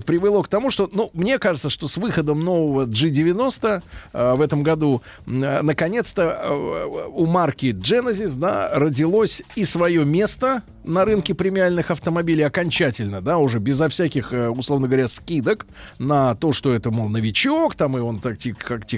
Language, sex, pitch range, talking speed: Russian, male, 125-170 Hz, 155 wpm